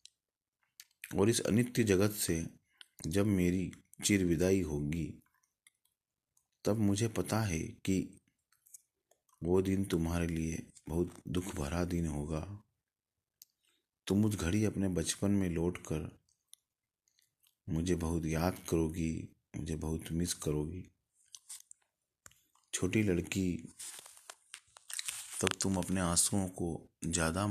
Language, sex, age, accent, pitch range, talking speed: Hindi, male, 30-49, native, 80-95 Hz, 105 wpm